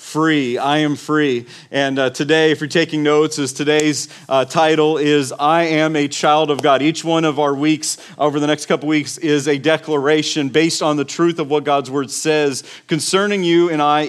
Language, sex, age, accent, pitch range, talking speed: English, male, 40-59, American, 155-195 Hz, 205 wpm